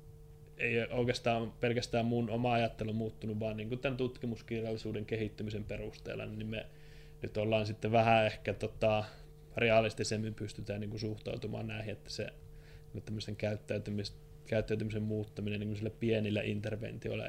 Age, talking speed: 20-39, 120 wpm